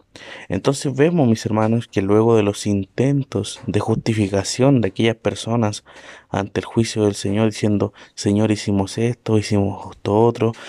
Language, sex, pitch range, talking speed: Spanish, male, 105-125 Hz, 145 wpm